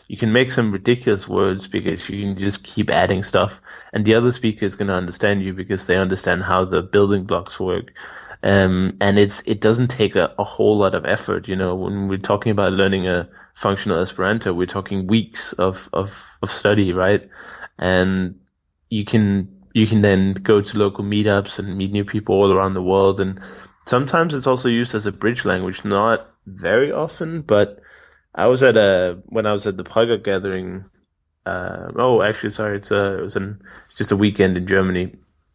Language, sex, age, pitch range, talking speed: English, male, 20-39, 95-105 Hz, 200 wpm